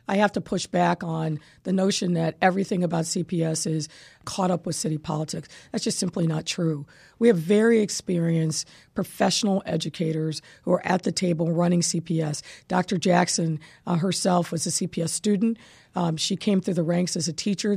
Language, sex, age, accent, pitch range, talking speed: English, female, 50-69, American, 170-195 Hz, 180 wpm